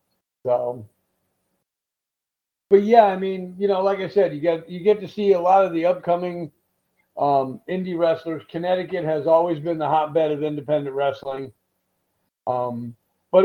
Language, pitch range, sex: English, 140-175 Hz, male